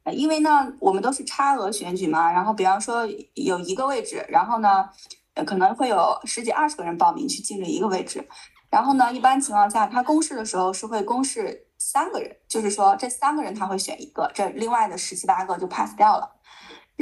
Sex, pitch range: female, 200-305 Hz